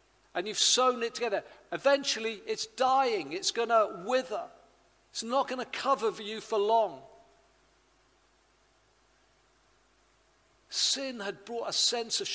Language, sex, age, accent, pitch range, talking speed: English, male, 50-69, British, 215-270 Hz, 125 wpm